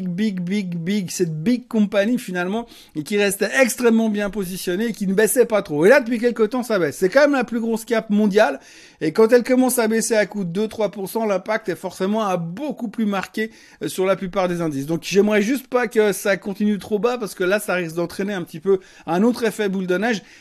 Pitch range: 175-220 Hz